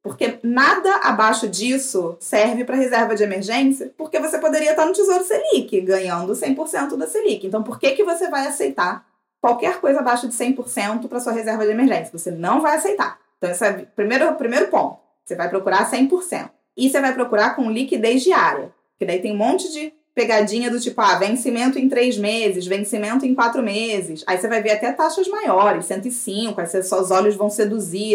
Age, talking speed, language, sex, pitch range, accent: 20-39, 185 wpm, Portuguese, female, 200-260 Hz, Brazilian